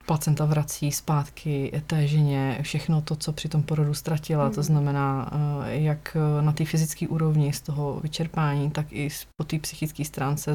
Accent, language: native, Czech